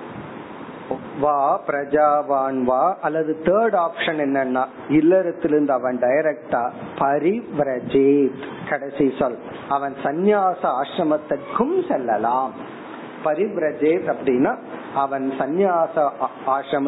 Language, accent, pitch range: Tamil, native, 140-200 Hz